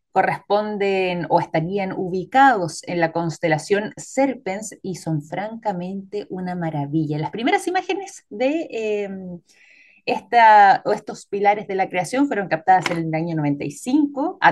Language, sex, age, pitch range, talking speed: Spanish, female, 20-39, 175-245 Hz, 130 wpm